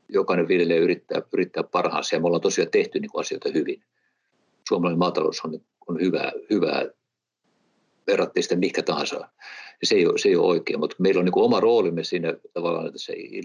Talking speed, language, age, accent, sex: 165 wpm, Finnish, 50-69, native, male